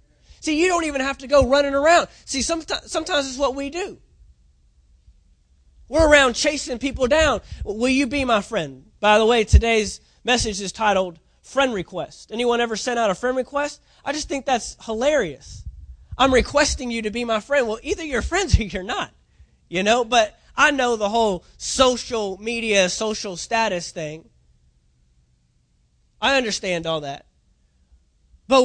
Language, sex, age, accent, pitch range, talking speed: English, male, 20-39, American, 185-270 Hz, 165 wpm